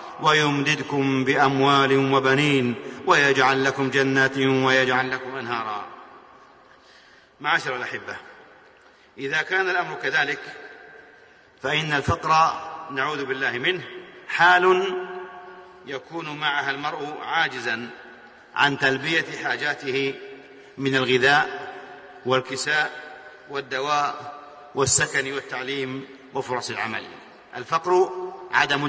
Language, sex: Arabic, male